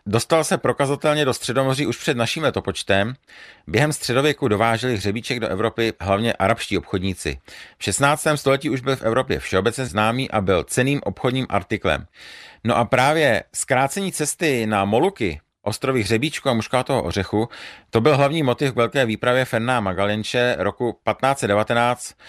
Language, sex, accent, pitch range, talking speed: Czech, male, native, 100-135 Hz, 150 wpm